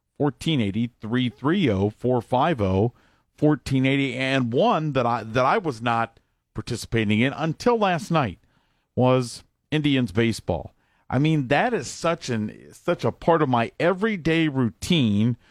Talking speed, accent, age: 115 wpm, American, 50-69